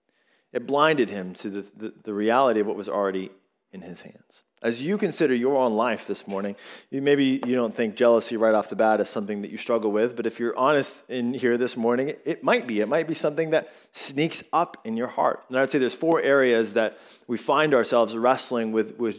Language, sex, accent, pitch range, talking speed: English, male, American, 115-145 Hz, 235 wpm